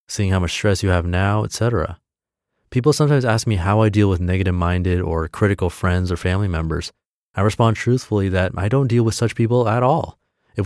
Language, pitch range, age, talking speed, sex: English, 90-115 Hz, 30-49, 205 wpm, male